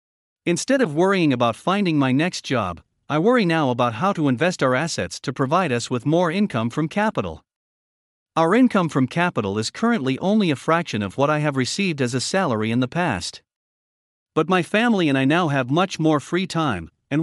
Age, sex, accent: 50-69, male, American